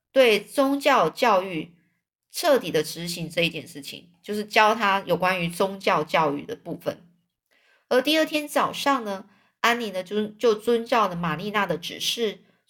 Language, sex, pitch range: Chinese, female, 185-255 Hz